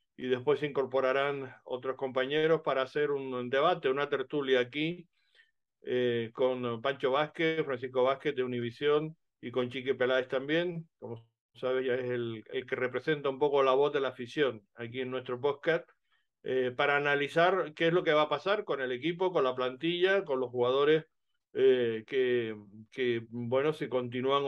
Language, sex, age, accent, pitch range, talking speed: Spanish, male, 50-69, Argentinian, 130-160 Hz, 170 wpm